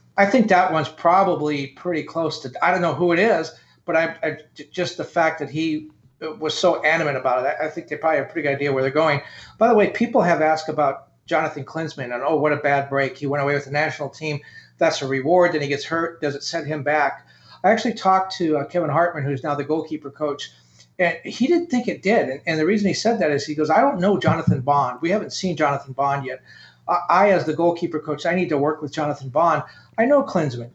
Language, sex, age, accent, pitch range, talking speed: English, male, 40-59, American, 150-175 Hz, 250 wpm